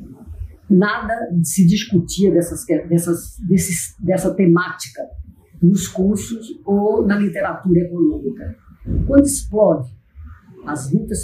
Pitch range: 155-210 Hz